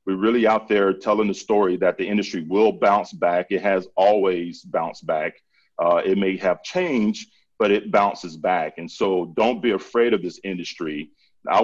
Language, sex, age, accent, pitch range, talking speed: English, male, 40-59, American, 95-120 Hz, 185 wpm